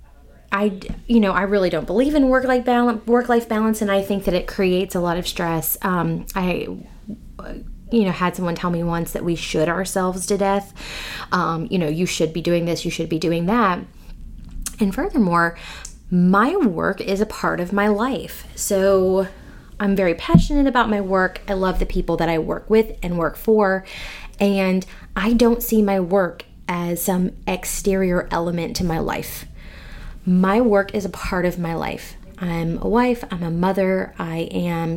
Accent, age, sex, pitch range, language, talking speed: American, 20-39, female, 170-215 Hz, English, 180 wpm